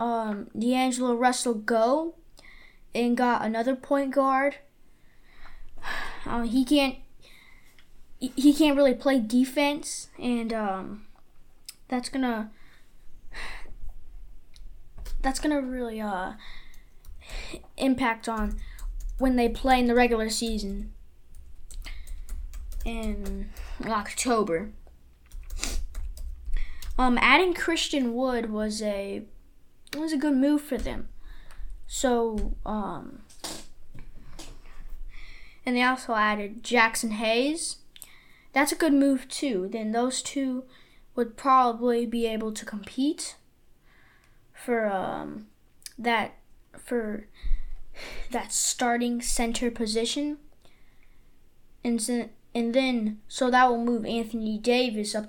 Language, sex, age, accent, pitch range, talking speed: English, female, 10-29, American, 210-260 Hz, 95 wpm